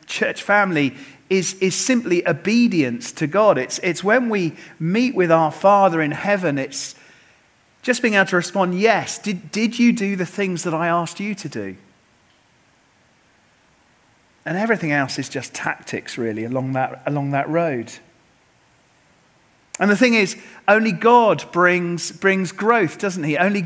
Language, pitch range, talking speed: English, 150-200 Hz, 155 wpm